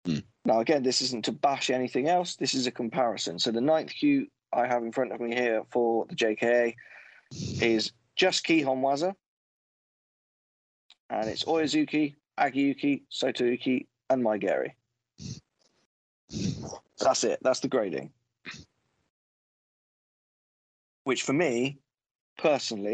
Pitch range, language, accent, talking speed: 115-145 Hz, English, British, 120 wpm